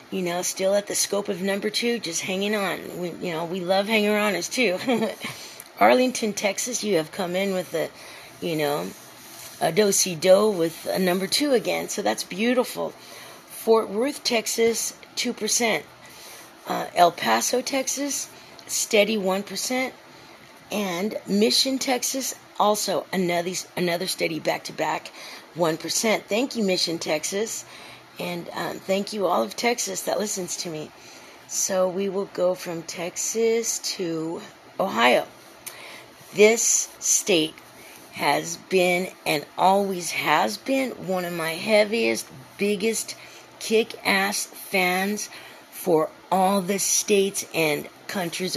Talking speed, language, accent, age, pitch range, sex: 130 wpm, English, American, 40-59, 180-220 Hz, female